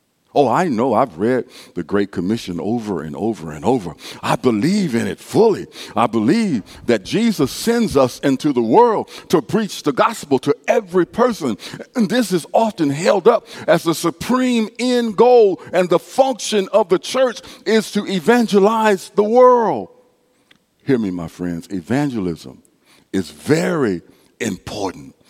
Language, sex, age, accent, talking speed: English, male, 50-69, American, 150 wpm